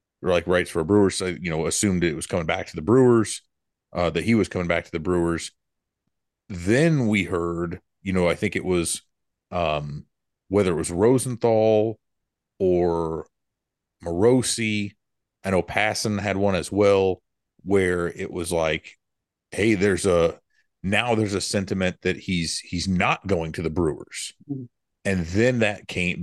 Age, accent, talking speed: 30-49, American, 160 wpm